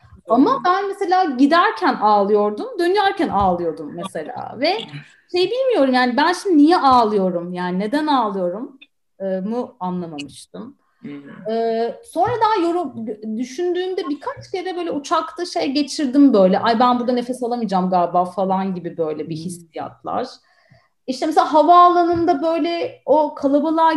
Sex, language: female, Turkish